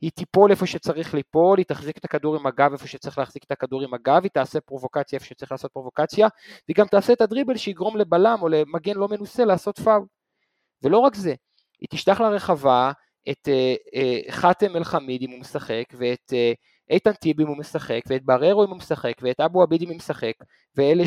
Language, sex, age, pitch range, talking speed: Hebrew, male, 30-49, 140-195 Hz, 195 wpm